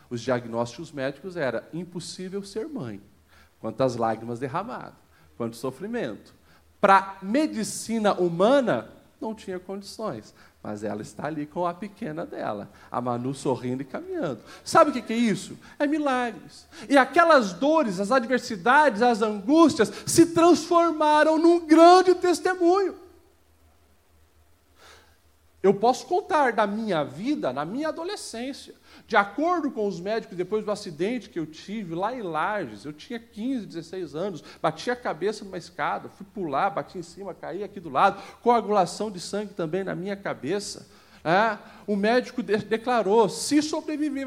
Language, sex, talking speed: Portuguese, male, 140 wpm